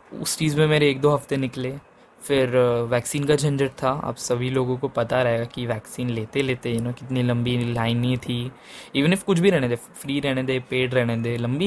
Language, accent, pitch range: English, Indian, 120-160 Hz